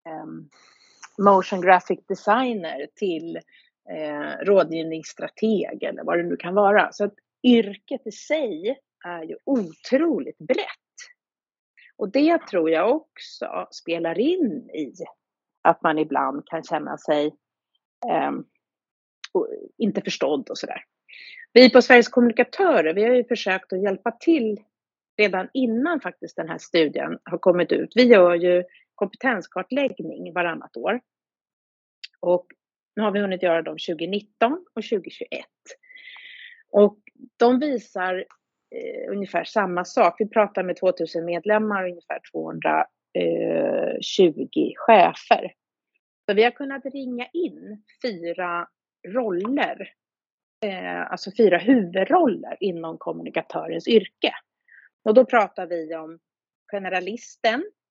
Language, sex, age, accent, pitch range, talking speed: Swedish, female, 30-49, native, 180-260 Hz, 115 wpm